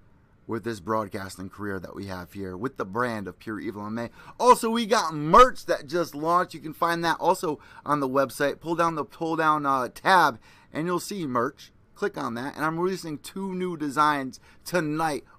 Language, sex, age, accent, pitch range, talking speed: English, male, 30-49, American, 120-175 Hz, 200 wpm